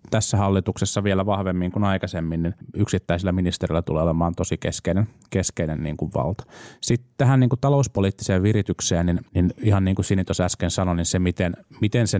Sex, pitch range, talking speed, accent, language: male, 90-115 Hz, 175 wpm, native, Finnish